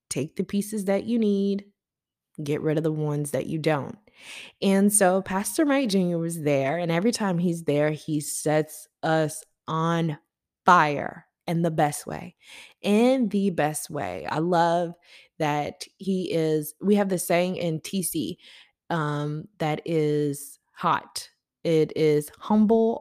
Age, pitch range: 20-39, 150-200 Hz